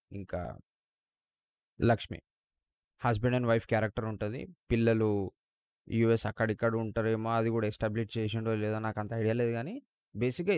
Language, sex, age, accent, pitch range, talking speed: Telugu, male, 20-39, native, 110-130 Hz, 125 wpm